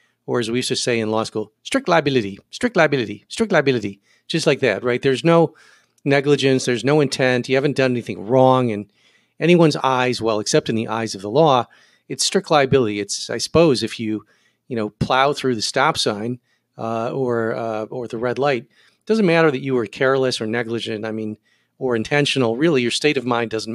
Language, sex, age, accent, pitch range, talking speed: English, male, 40-59, American, 115-135 Hz, 205 wpm